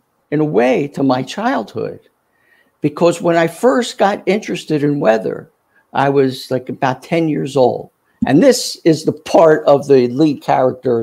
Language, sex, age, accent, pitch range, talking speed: English, male, 60-79, American, 145-200 Hz, 165 wpm